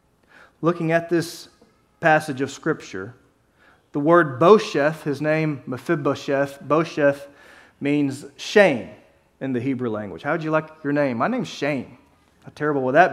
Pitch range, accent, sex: 140-180 Hz, American, male